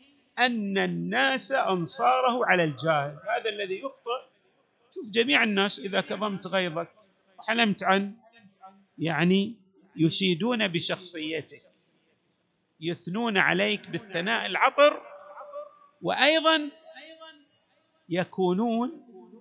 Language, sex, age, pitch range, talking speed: Arabic, male, 50-69, 175-250 Hz, 75 wpm